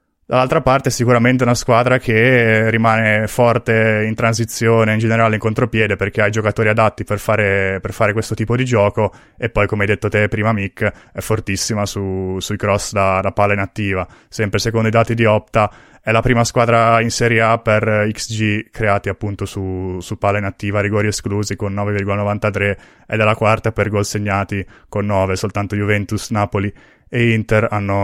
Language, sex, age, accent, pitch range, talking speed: Italian, male, 20-39, native, 105-125 Hz, 180 wpm